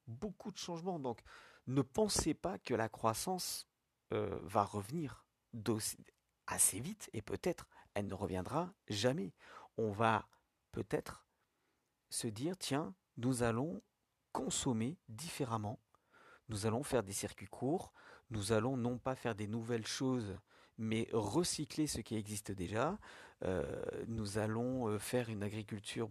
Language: French